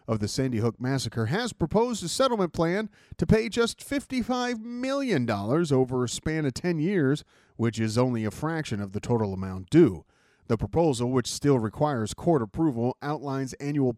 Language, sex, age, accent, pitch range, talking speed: English, male, 40-59, American, 110-145 Hz, 170 wpm